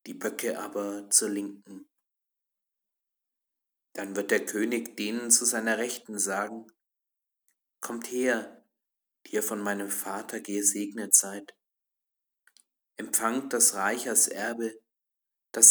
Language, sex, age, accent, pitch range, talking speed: German, male, 50-69, German, 100-120 Hz, 110 wpm